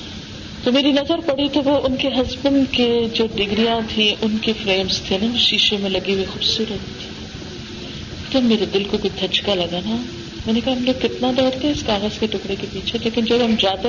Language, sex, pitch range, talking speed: Urdu, female, 190-250 Hz, 210 wpm